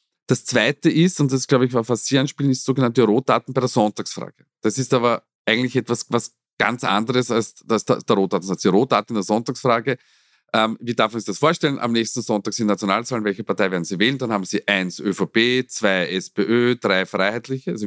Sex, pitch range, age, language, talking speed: male, 110-130 Hz, 40-59, German, 210 wpm